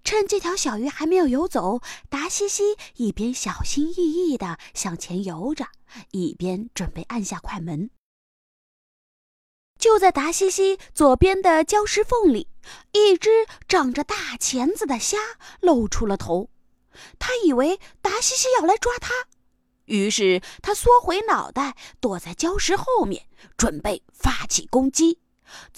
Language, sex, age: Chinese, female, 20-39